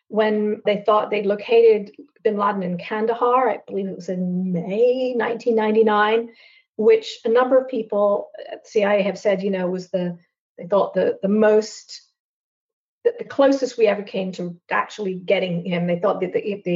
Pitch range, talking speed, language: 185-225 Hz, 170 wpm, English